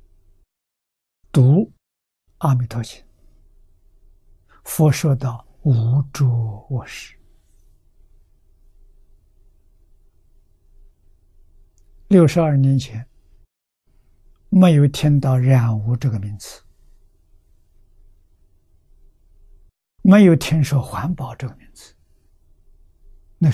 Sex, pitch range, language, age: male, 80-130 Hz, Chinese, 60-79